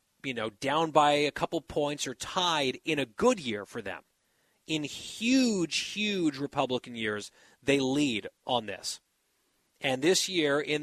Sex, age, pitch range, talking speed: male, 30-49, 135-165 Hz, 155 wpm